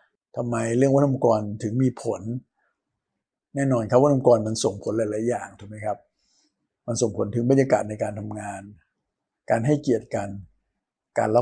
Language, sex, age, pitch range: Thai, male, 60-79, 110-135 Hz